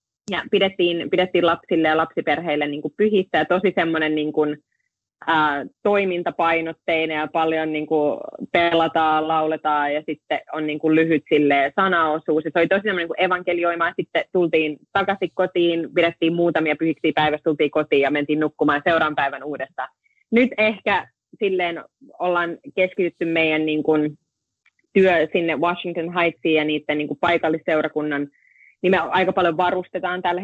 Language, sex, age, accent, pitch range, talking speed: Finnish, female, 30-49, native, 155-180 Hz, 135 wpm